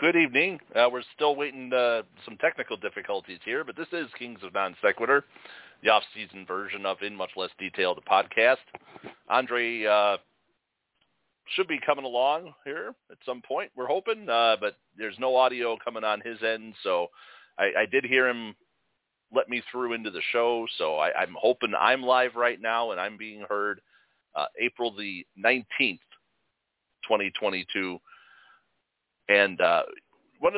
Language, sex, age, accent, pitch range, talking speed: English, male, 40-59, American, 100-125 Hz, 155 wpm